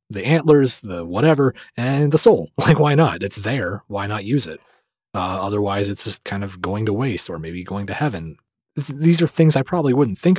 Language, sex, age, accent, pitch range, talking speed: English, male, 30-49, American, 95-125 Hz, 215 wpm